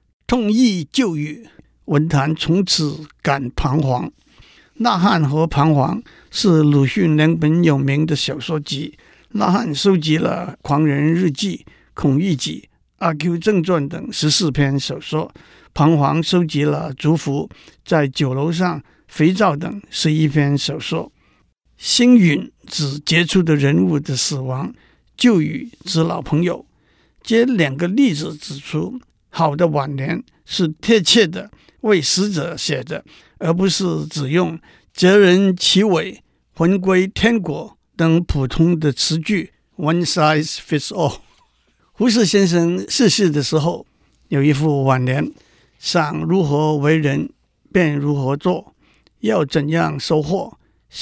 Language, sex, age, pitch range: Chinese, male, 60-79, 150-180 Hz